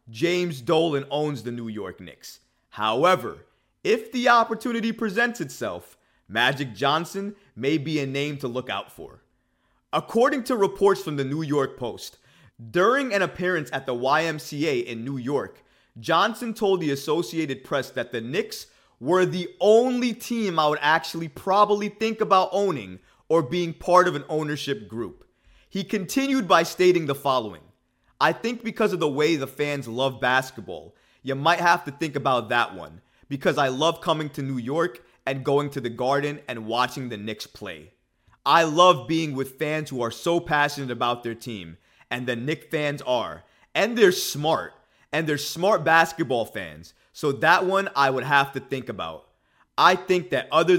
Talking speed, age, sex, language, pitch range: 170 wpm, 30-49, male, English, 135-185 Hz